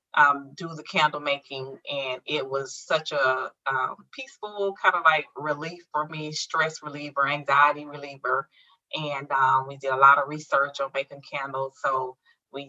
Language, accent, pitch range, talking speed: English, American, 135-160 Hz, 165 wpm